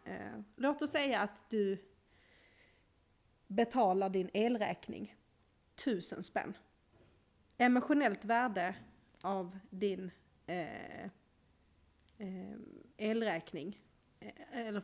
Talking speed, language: 65 wpm, Swedish